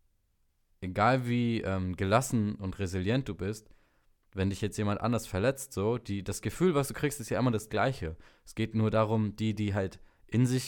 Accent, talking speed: German, 195 wpm